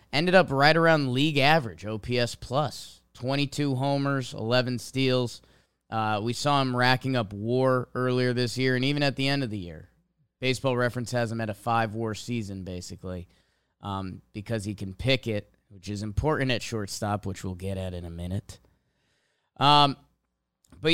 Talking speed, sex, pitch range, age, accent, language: 170 wpm, male, 115-150 Hz, 20-39, American, English